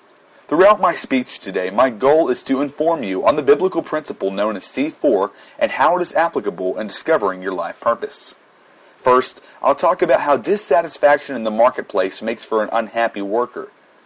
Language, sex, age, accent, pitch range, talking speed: English, male, 30-49, American, 110-165 Hz, 175 wpm